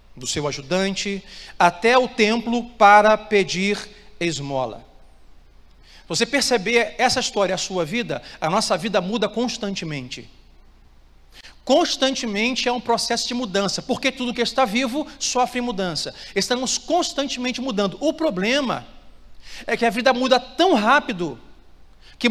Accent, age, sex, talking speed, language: Brazilian, 40-59, male, 125 wpm, Portuguese